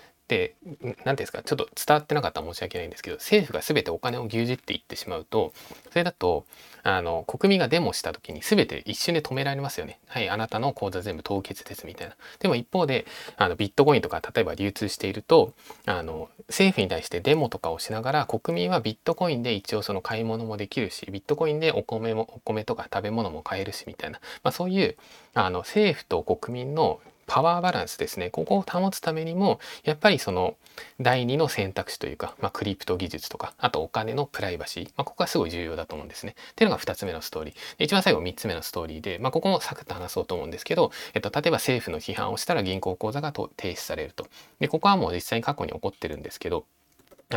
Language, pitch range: Japanese, 100-165 Hz